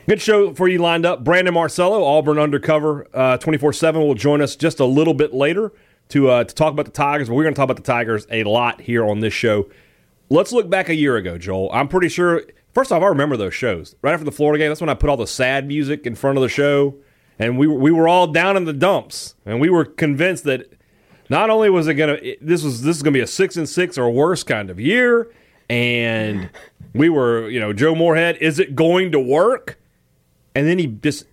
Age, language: 30-49, English